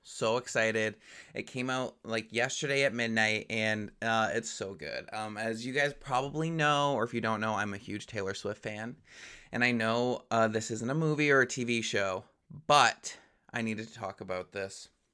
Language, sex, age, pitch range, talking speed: English, male, 20-39, 110-125 Hz, 200 wpm